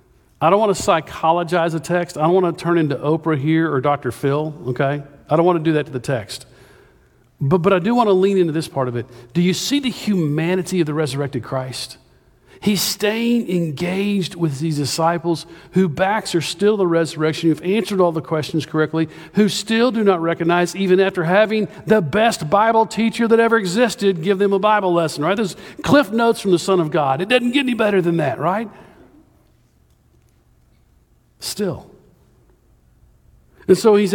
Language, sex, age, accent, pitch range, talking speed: English, male, 50-69, American, 140-185 Hz, 190 wpm